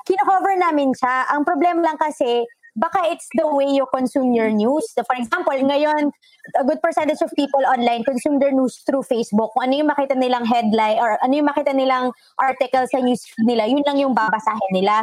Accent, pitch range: Filipino, 245-300 Hz